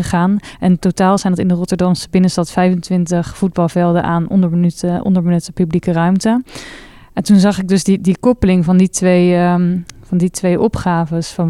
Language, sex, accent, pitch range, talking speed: Dutch, female, Dutch, 175-195 Hz, 170 wpm